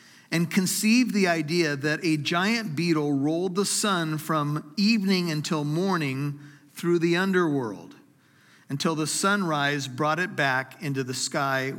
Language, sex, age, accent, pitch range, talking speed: English, male, 50-69, American, 140-185 Hz, 135 wpm